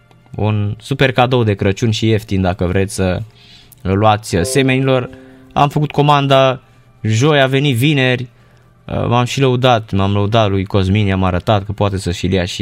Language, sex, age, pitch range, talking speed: Romanian, male, 20-39, 105-135 Hz, 155 wpm